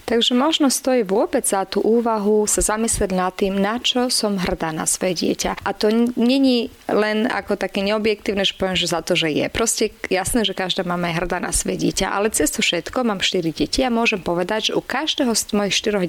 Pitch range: 185-225 Hz